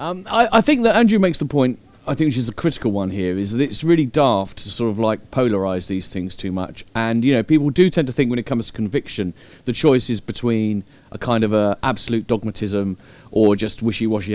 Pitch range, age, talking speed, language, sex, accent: 110-155 Hz, 40-59, 240 wpm, English, male, British